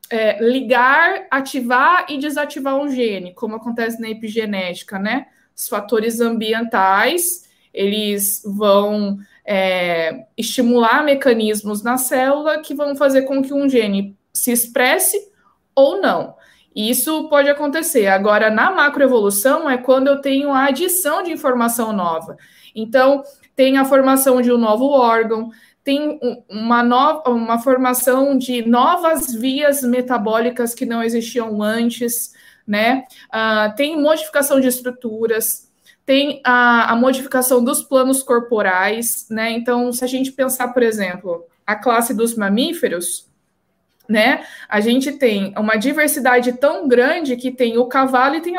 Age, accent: 20-39, Brazilian